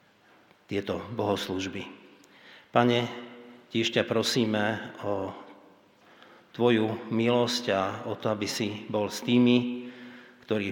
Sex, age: male, 50-69